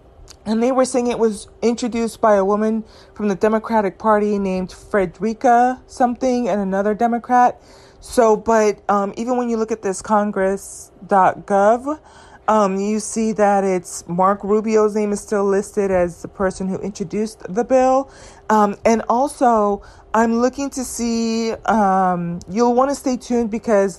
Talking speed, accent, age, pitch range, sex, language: 155 wpm, American, 30-49, 200-235 Hz, female, English